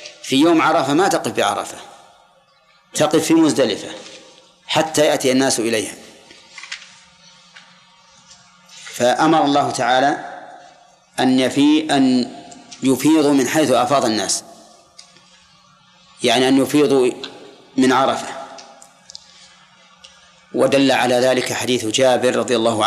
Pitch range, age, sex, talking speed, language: 130-150 Hz, 40-59, male, 95 wpm, Arabic